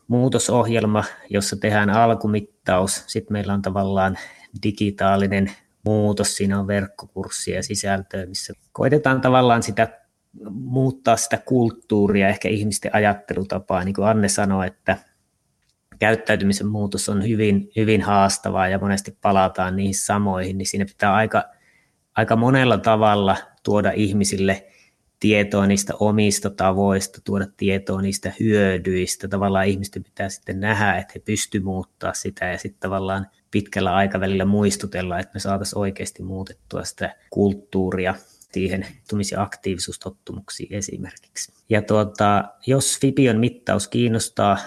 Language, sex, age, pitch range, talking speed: Finnish, male, 30-49, 95-110 Hz, 120 wpm